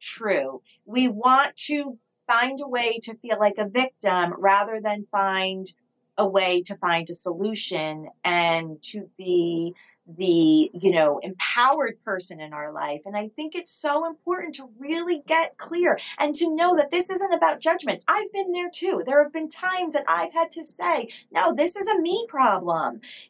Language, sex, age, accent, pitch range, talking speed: English, female, 30-49, American, 195-305 Hz, 180 wpm